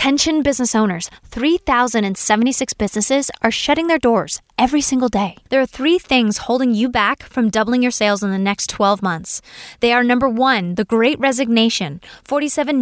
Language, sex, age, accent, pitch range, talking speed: English, female, 10-29, American, 205-270 Hz, 170 wpm